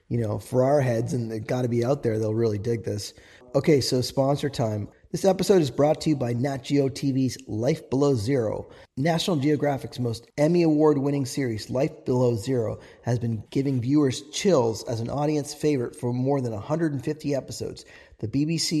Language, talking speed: English, 185 wpm